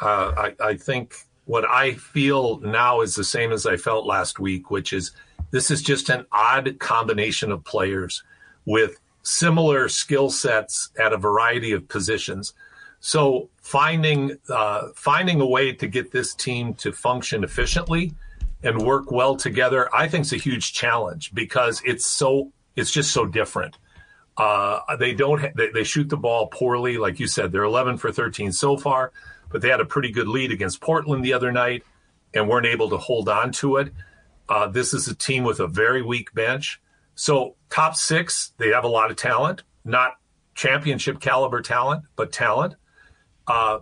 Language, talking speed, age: English, 180 wpm, 50-69